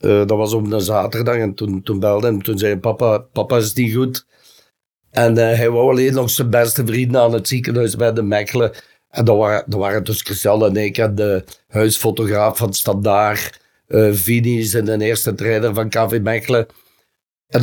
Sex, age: male, 60-79